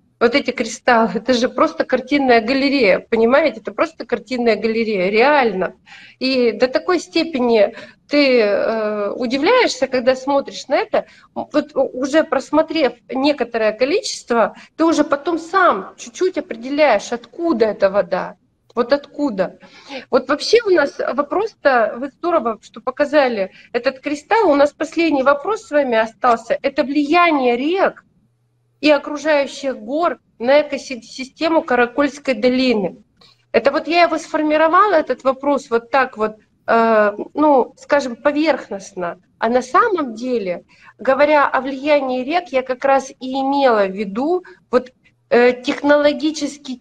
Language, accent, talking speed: Russian, native, 125 wpm